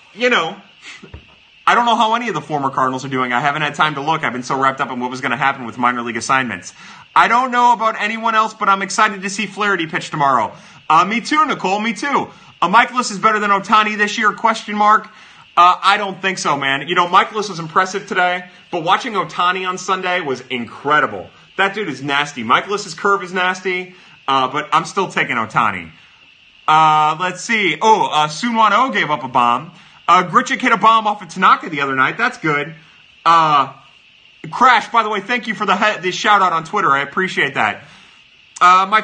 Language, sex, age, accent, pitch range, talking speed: English, male, 30-49, American, 155-220 Hz, 210 wpm